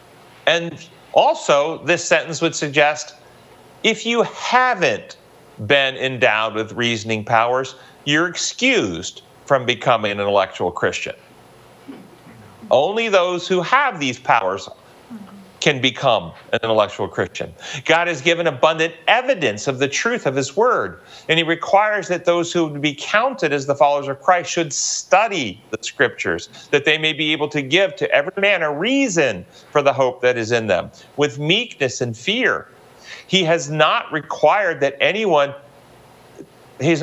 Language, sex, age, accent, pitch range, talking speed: English, male, 40-59, American, 135-185 Hz, 150 wpm